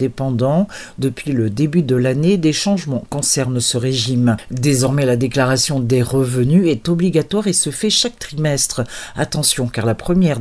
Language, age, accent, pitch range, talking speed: Portuguese, 50-69, French, 120-160 Hz, 155 wpm